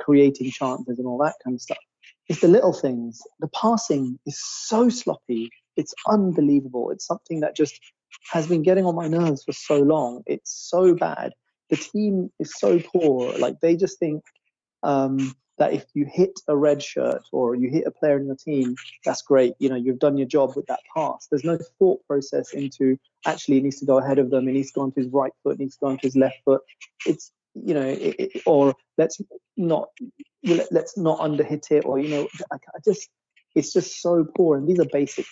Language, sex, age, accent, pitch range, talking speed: English, male, 30-49, British, 135-165 Hz, 215 wpm